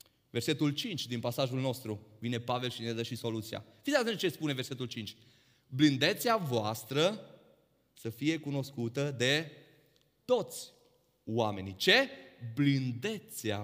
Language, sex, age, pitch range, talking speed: Romanian, male, 30-49, 120-155 Hz, 125 wpm